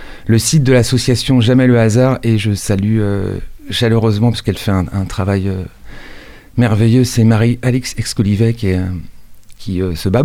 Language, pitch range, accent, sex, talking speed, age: French, 105-130 Hz, French, male, 165 wpm, 40-59